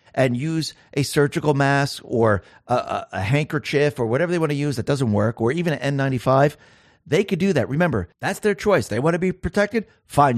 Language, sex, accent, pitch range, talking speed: English, male, American, 110-150 Hz, 215 wpm